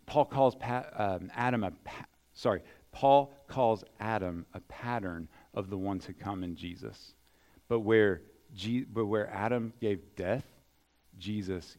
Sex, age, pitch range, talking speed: male, 40-59, 90-120 Hz, 150 wpm